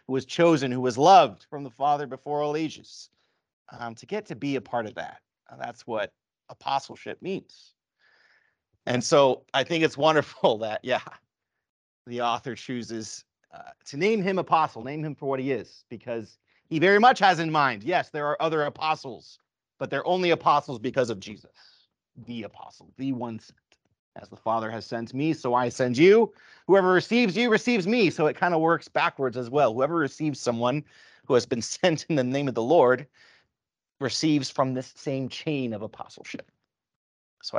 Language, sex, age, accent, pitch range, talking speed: English, male, 30-49, American, 125-160 Hz, 180 wpm